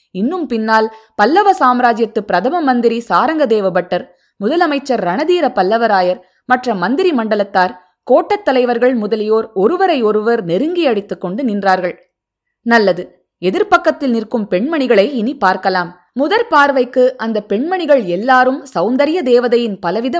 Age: 20-39